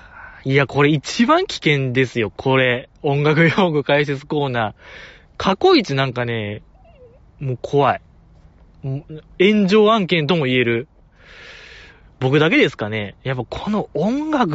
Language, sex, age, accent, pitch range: Japanese, male, 20-39, native, 120-180 Hz